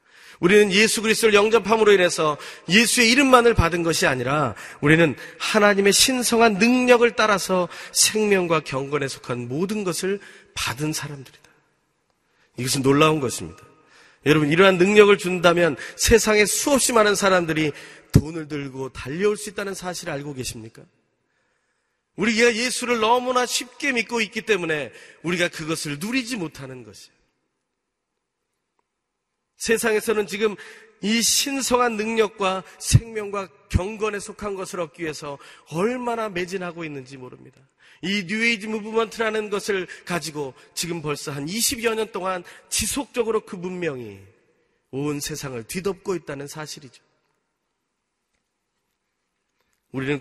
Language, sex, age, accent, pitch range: Korean, male, 30-49, native, 150-220 Hz